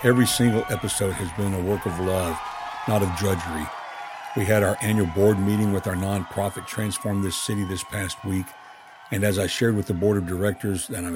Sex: male